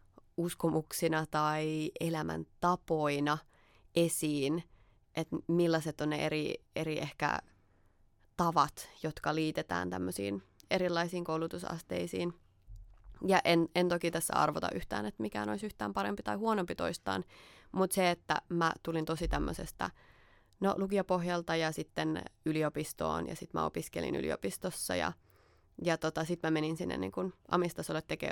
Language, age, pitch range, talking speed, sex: Finnish, 20-39, 110-170 Hz, 125 wpm, female